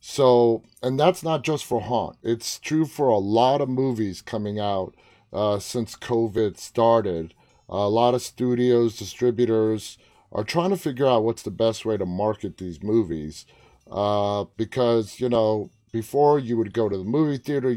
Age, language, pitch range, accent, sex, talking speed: 30-49, English, 110-125 Hz, American, male, 170 wpm